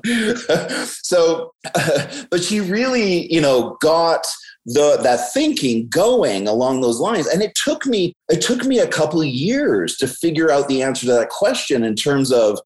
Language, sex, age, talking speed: English, male, 30-49, 175 wpm